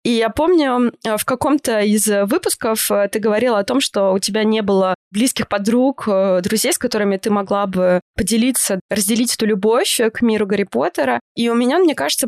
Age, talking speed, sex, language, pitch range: 20-39, 180 wpm, female, Russian, 205-250 Hz